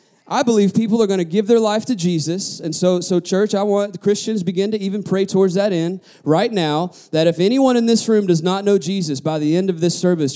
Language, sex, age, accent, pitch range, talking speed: English, male, 30-49, American, 165-215 Hz, 255 wpm